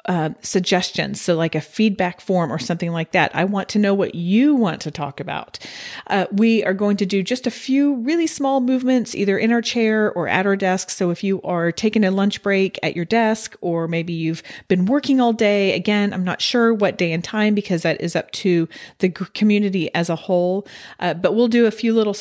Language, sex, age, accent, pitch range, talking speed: English, female, 40-59, American, 175-225 Hz, 230 wpm